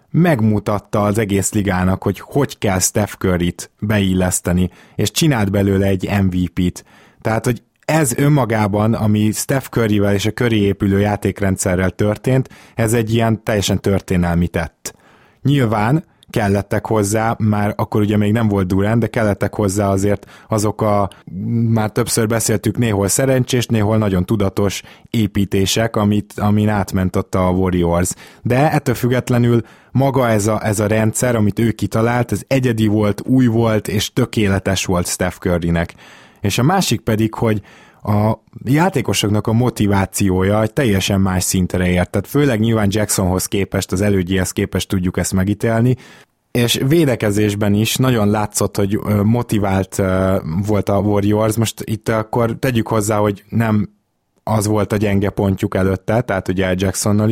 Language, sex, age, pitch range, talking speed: Hungarian, male, 20-39, 100-115 Hz, 145 wpm